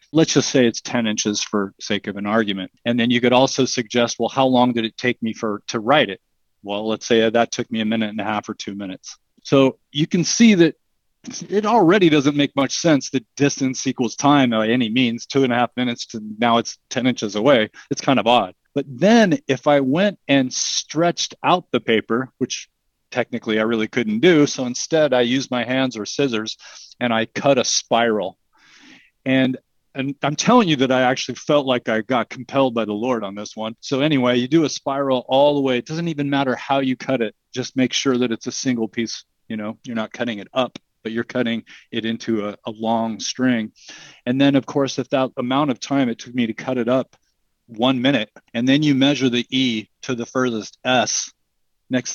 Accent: American